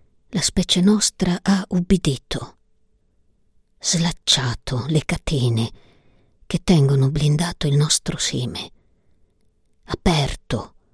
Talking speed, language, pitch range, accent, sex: 80 wpm, Italian, 110-170 Hz, native, female